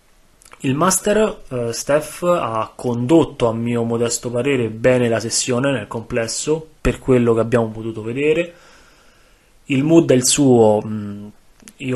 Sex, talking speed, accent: male, 135 wpm, native